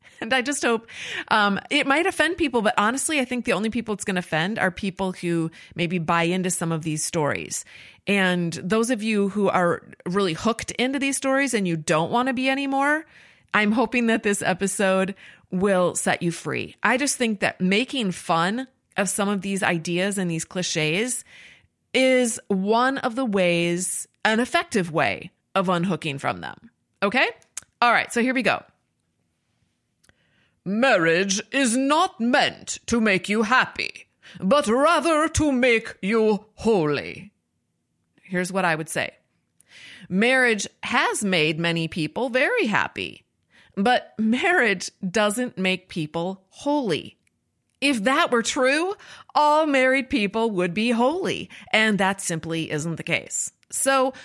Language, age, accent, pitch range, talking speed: English, 30-49, American, 180-255 Hz, 155 wpm